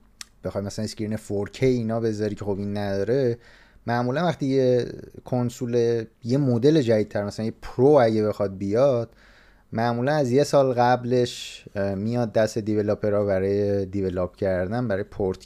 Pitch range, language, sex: 100-125 Hz, Persian, male